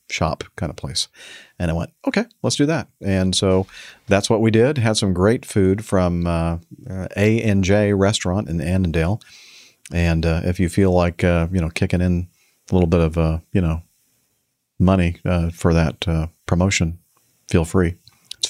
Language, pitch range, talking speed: English, 85-105 Hz, 185 wpm